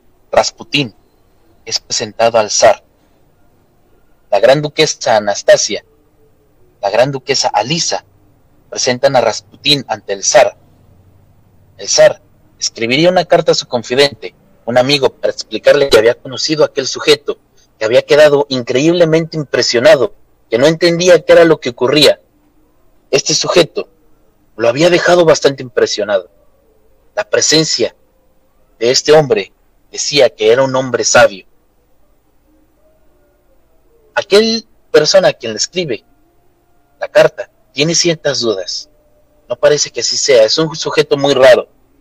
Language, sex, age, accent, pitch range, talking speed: Spanish, male, 30-49, Mexican, 130-175 Hz, 125 wpm